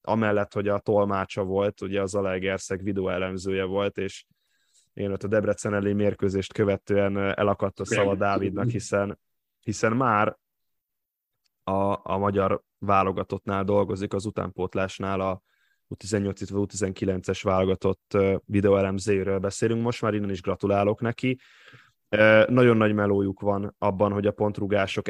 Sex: male